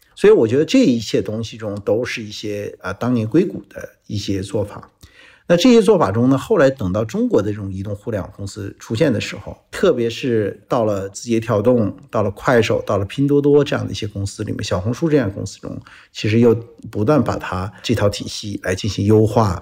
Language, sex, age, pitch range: Chinese, male, 50-69, 100-130 Hz